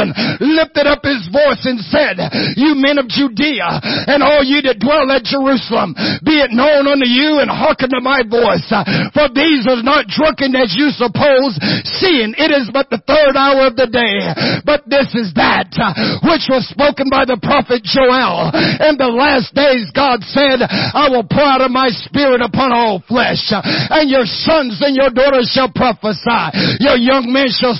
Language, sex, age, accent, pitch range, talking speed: English, male, 50-69, American, 245-285 Hz, 180 wpm